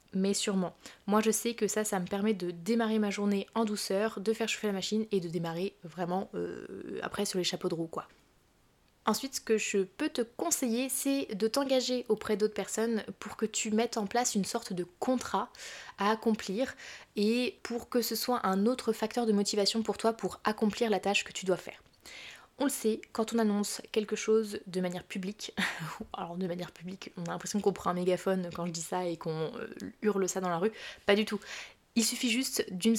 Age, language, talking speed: 20-39, French, 215 wpm